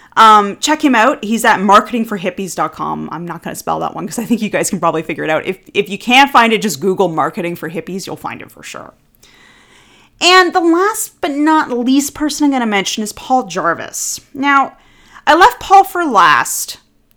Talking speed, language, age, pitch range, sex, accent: 210 wpm, English, 30-49, 190-290 Hz, female, American